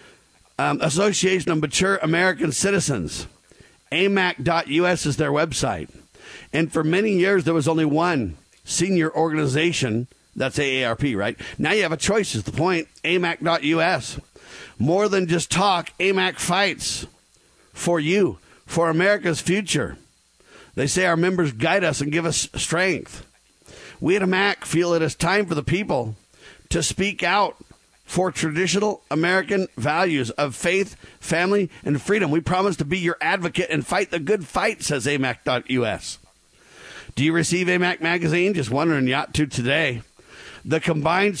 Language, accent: English, American